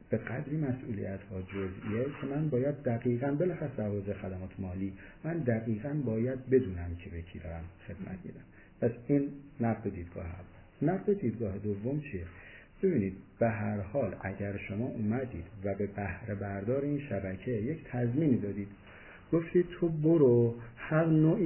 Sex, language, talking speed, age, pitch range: male, Persian, 145 wpm, 50-69, 95-130 Hz